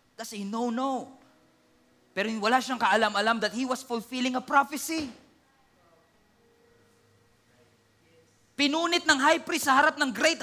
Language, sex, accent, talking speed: English, male, Filipino, 130 wpm